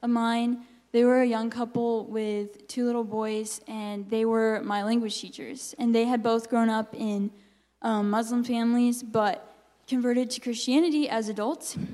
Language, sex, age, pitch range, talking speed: English, female, 10-29, 210-240 Hz, 165 wpm